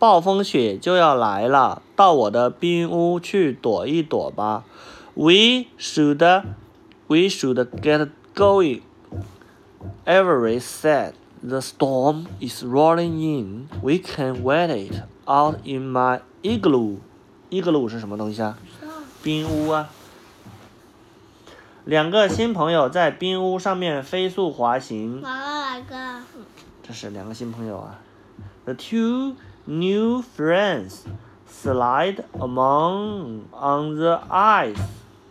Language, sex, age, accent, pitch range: Chinese, male, 30-49, native, 115-175 Hz